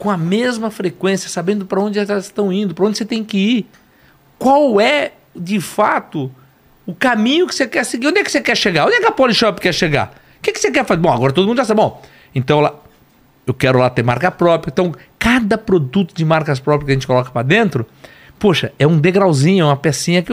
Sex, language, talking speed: male, Portuguese, 235 wpm